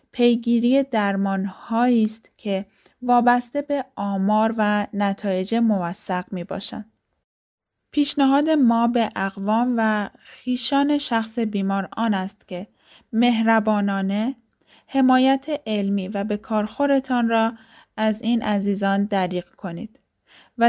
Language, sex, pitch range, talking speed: Persian, female, 195-235 Hz, 105 wpm